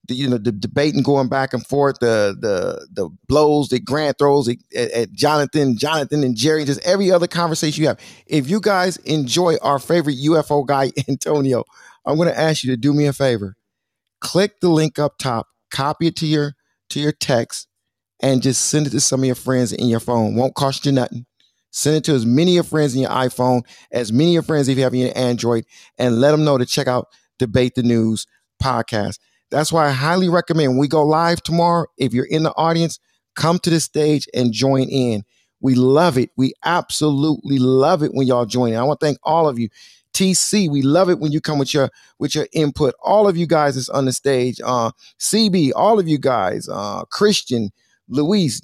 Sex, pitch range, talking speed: male, 125-160 Hz, 215 wpm